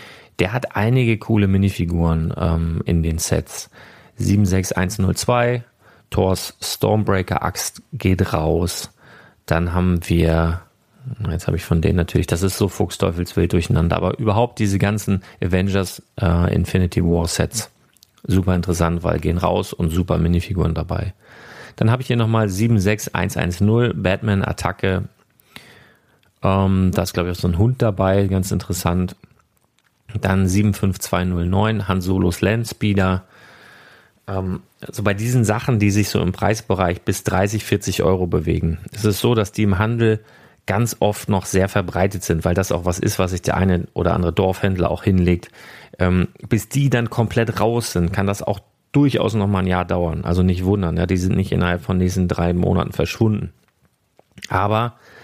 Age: 30-49